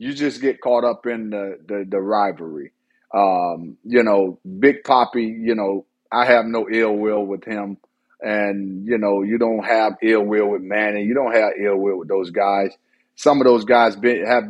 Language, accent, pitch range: English, American, 115-140 Hz